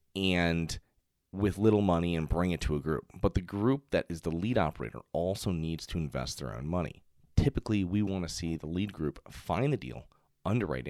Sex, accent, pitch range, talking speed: male, American, 80-100 Hz, 205 wpm